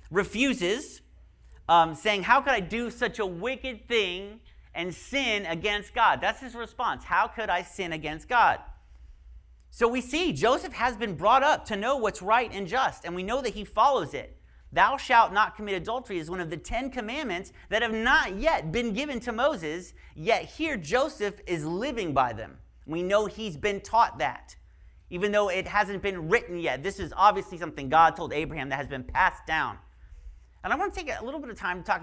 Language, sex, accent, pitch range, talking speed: English, male, American, 155-230 Hz, 200 wpm